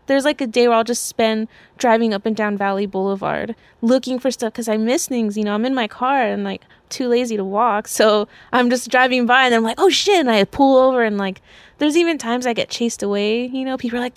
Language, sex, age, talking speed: English, female, 20-39, 260 wpm